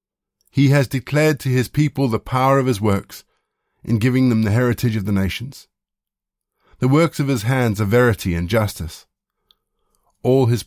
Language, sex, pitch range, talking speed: English, male, 95-130 Hz, 170 wpm